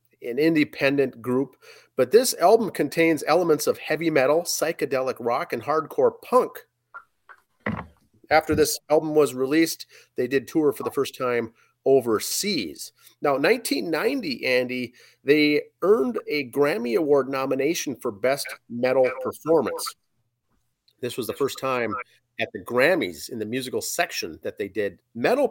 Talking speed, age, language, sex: 135 wpm, 30-49, English, male